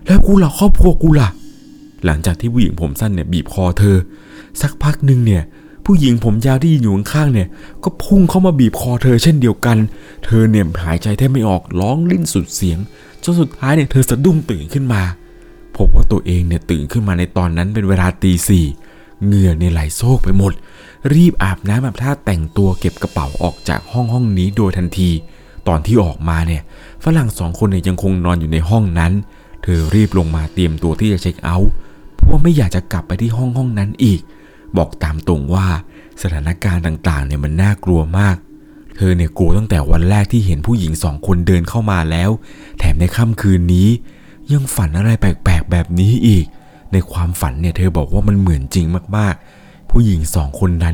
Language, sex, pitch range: Thai, male, 85-115 Hz